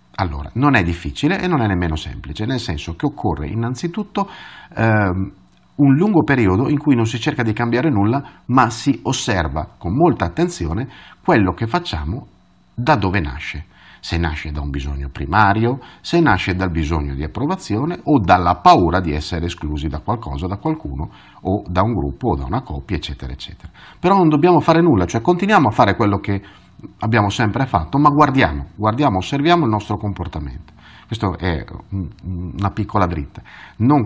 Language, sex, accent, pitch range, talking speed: Italian, male, native, 80-130 Hz, 170 wpm